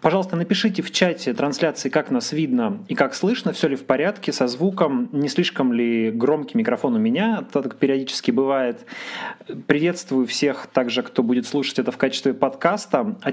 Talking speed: 175 wpm